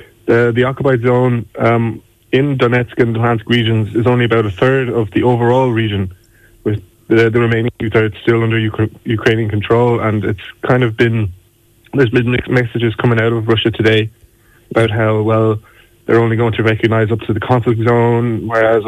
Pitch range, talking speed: 110-120 Hz, 180 wpm